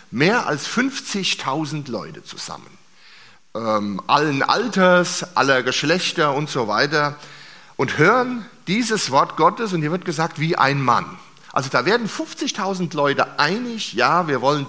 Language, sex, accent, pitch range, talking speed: German, male, German, 140-190 Hz, 140 wpm